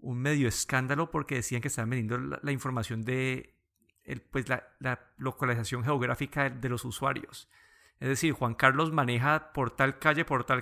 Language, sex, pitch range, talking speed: Spanish, male, 120-140 Hz, 180 wpm